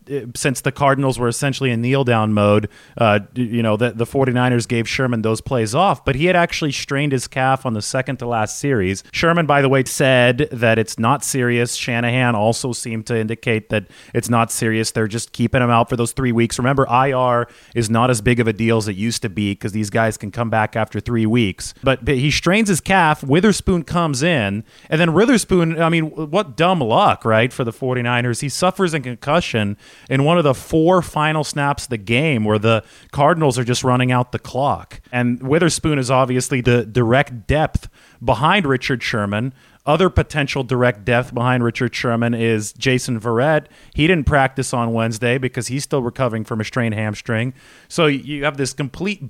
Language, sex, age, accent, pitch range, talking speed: English, male, 30-49, American, 115-145 Hz, 200 wpm